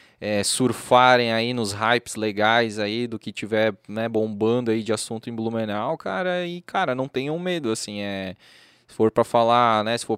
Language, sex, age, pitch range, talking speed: Portuguese, male, 20-39, 110-140 Hz, 190 wpm